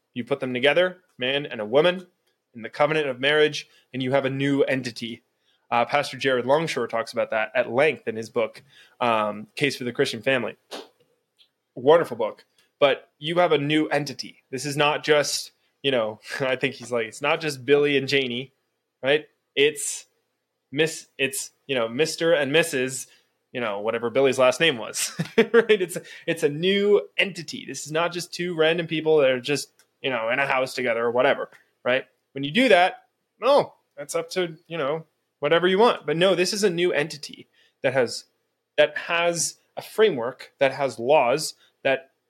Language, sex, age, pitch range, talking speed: English, male, 20-39, 130-170 Hz, 190 wpm